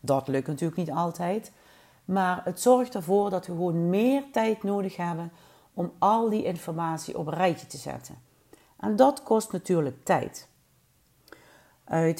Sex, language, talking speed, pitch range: female, Dutch, 150 wpm, 155-200 Hz